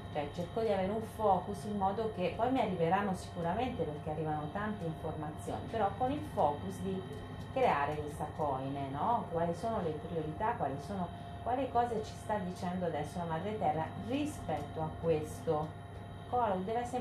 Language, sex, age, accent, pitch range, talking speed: Italian, female, 30-49, native, 155-220 Hz, 165 wpm